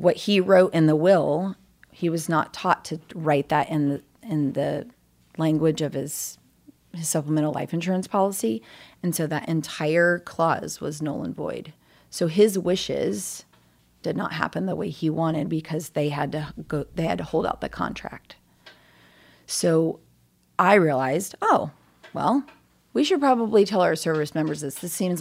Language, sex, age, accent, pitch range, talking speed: English, female, 30-49, American, 145-175 Hz, 170 wpm